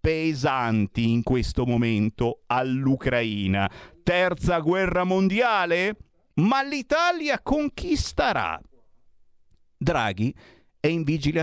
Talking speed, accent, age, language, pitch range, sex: 80 wpm, native, 50-69, Italian, 100-150 Hz, male